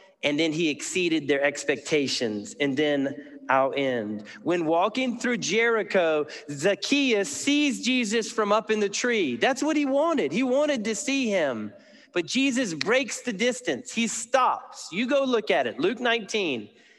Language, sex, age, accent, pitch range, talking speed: English, male, 40-59, American, 145-230 Hz, 160 wpm